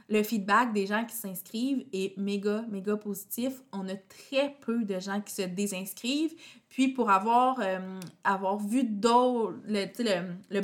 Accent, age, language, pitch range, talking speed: Canadian, 20-39, French, 195-235 Hz, 165 wpm